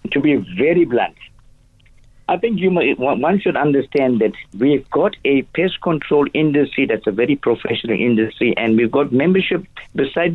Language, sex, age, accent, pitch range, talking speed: English, male, 50-69, Indian, 125-170 Hz, 160 wpm